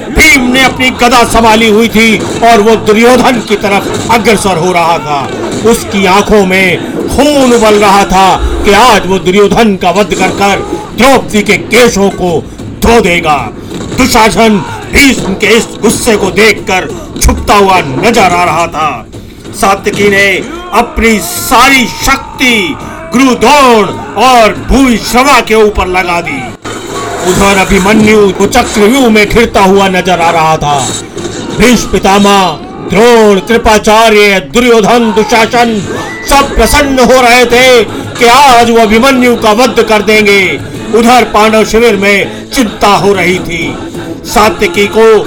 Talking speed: 100 wpm